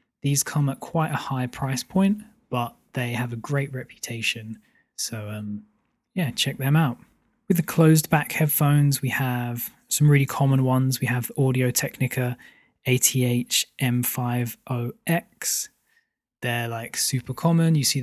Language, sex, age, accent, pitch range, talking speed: English, male, 20-39, British, 125-145 Hz, 135 wpm